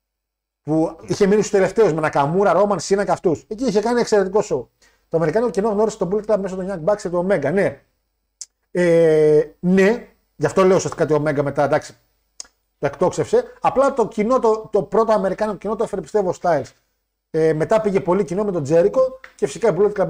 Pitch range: 150-205 Hz